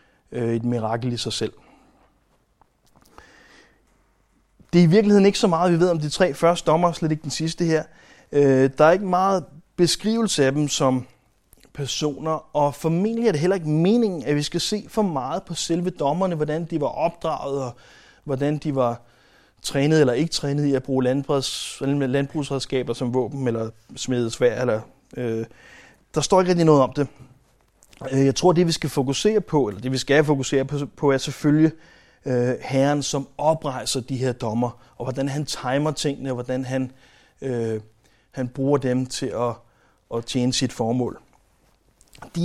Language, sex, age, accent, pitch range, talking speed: Danish, male, 30-49, native, 130-170 Hz, 165 wpm